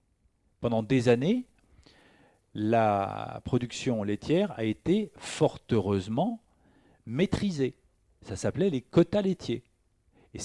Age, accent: 50-69, French